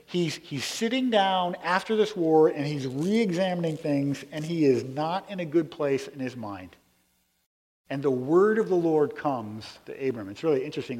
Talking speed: 185 wpm